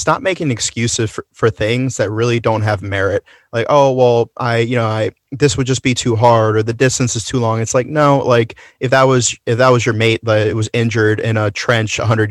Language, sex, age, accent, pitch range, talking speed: English, male, 30-49, American, 110-125 Hz, 250 wpm